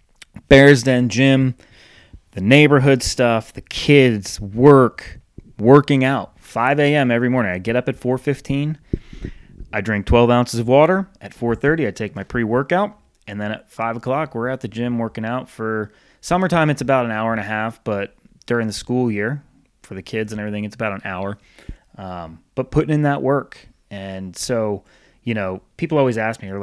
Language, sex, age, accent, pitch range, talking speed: English, male, 30-49, American, 105-140 Hz, 185 wpm